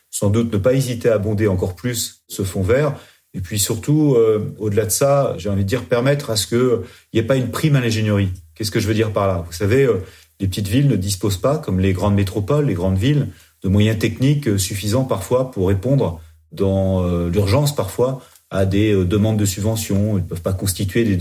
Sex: male